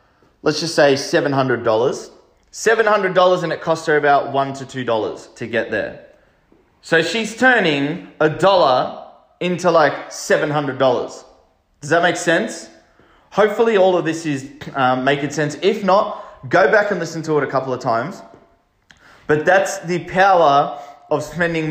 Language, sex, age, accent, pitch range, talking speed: English, male, 20-39, Australian, 140-180 Hz, 150 wpm